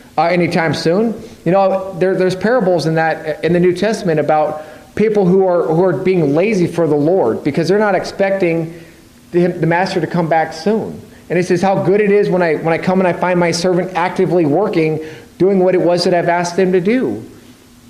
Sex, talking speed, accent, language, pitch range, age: male, 220 wpm, American, English, 165-215 Hz, 40-59